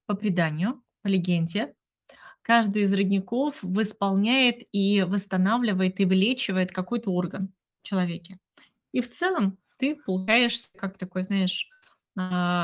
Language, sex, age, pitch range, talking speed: Russian, female, 30-49, 185-220 Hz, 115 wpm